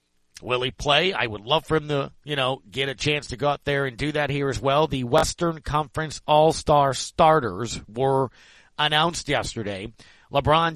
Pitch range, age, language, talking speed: 130-160 Hz, 40-59, English, 185 wpm